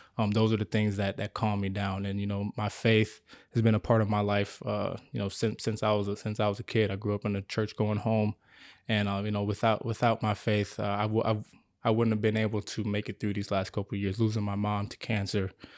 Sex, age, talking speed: male, 20-39, 280 wpm